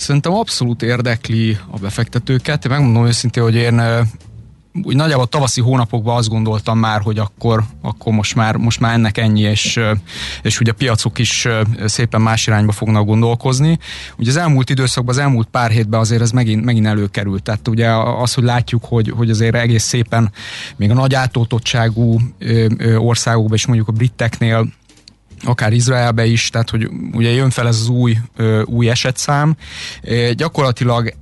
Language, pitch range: Hungarian, 110-125 Hz